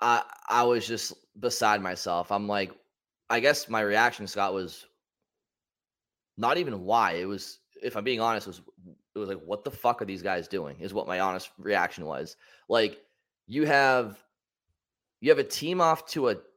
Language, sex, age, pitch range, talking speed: English, male, 20-39, 110-150 Hz, 185 wpm